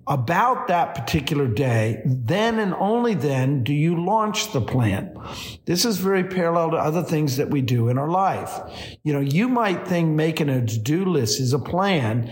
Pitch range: 125-170 Hz